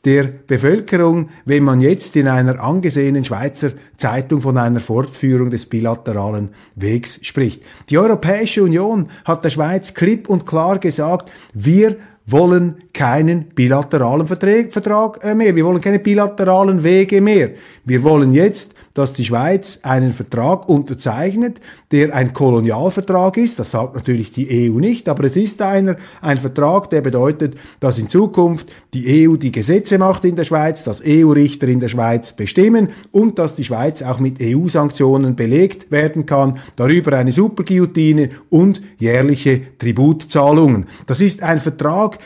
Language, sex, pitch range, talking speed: German, male, 140-190 Hz, 145 wpm